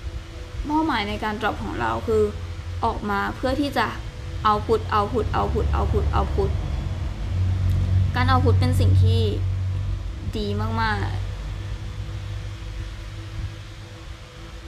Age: 20-39